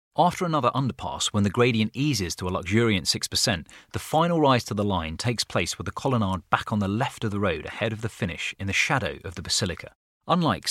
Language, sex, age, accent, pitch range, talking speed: English, male, 30-49, British, 95-120 Hz, 225 wpm